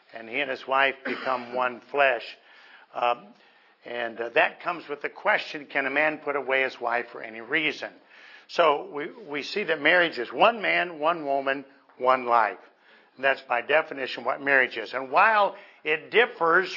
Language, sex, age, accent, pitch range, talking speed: English, male, 60-79, American, 130-165 Hz, 175 wpm